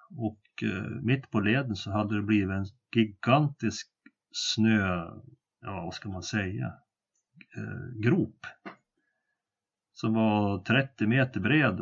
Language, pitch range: English, 105-125 Hz